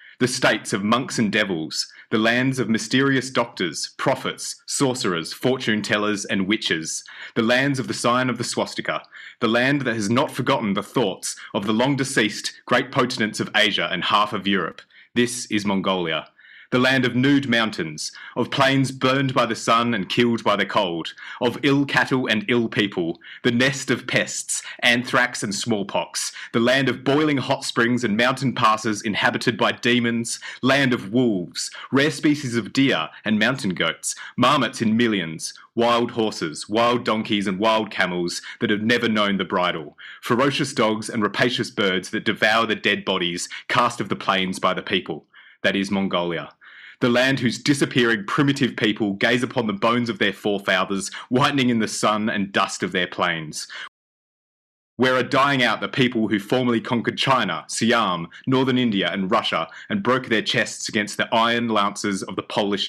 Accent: Australian